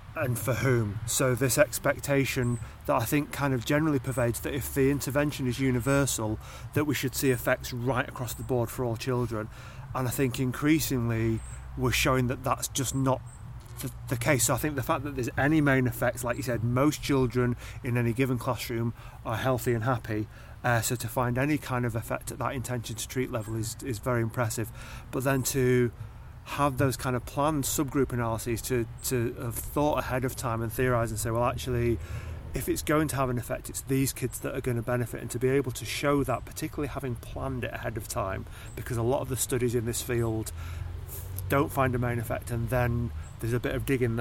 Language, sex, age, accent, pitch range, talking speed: English, male, 30-49, British, 115-130 Hz, 215 wpm